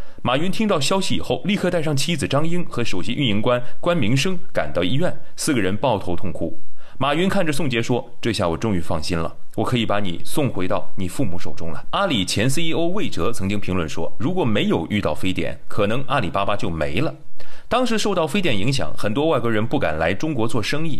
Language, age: Chinese, 30-49